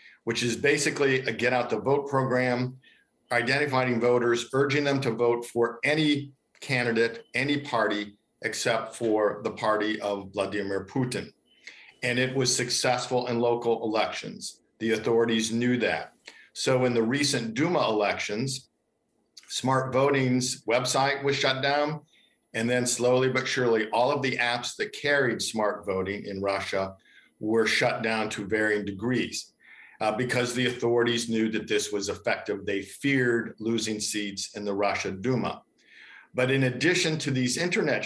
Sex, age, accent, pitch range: male, 50-69, American, 110-130 Hz